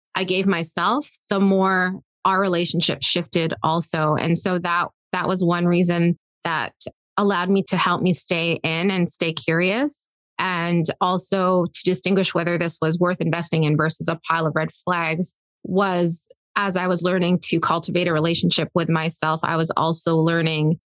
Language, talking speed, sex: English, 165 wpm, female